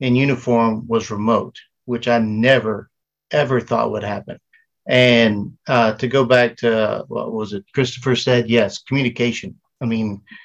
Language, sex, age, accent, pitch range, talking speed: English, male, 50-69, American, 115-135 Hz, 150 wpm